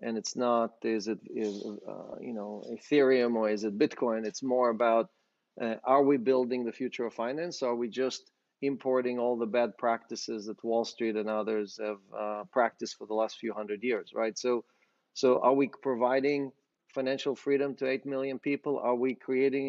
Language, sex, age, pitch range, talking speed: English, male, 40-59, 115-135 Hz, 190 wpm